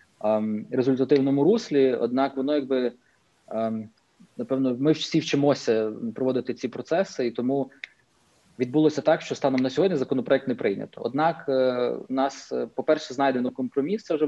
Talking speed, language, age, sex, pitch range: 130 wpm, Ukrainian, 20-39, male, 120-145 Hz